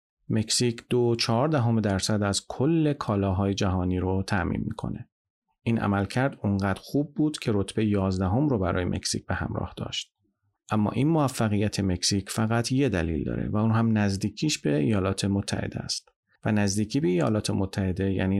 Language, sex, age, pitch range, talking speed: Persian, male, 40-59, 95-115 Hz, 155 wpm